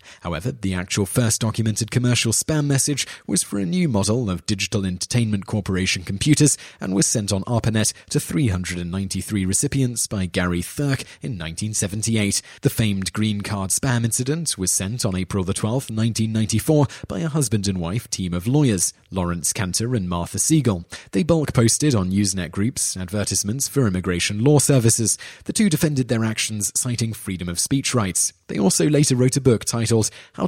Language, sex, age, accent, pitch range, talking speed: English, male, 30-49, British, 95-130 Hz, 165 wpm